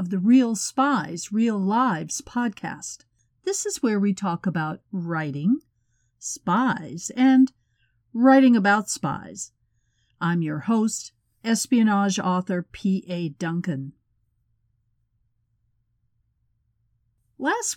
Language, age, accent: English, 50-69, American